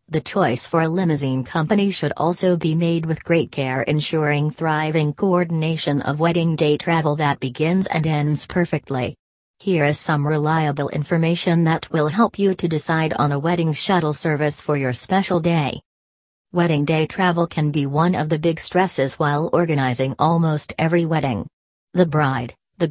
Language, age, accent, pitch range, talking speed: English, 40-59, American, 145-175 Hz, 165 wpm